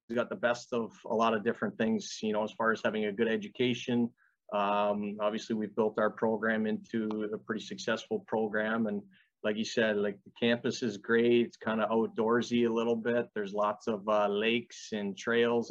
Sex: male